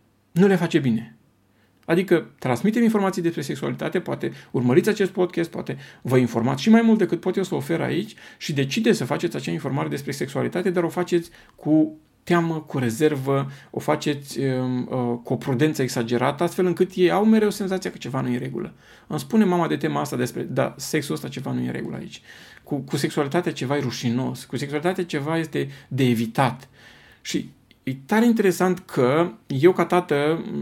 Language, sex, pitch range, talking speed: Romanian, male, 120-175 Hz, 190 wpm